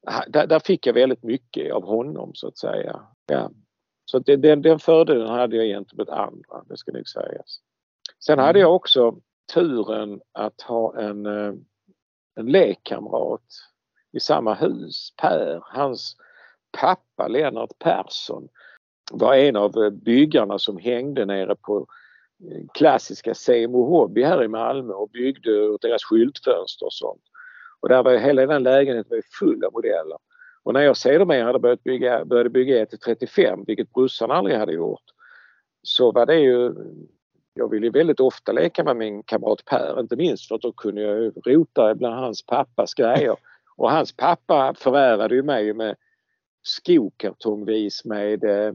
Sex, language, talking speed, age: male, Swedish, 150 wpm, 50-69